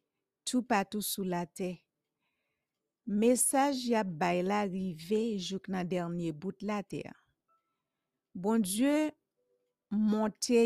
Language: English